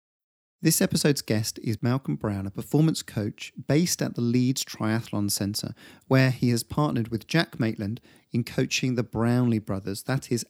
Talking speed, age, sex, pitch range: 165 wpm, 40-59, male, 110-150 Hz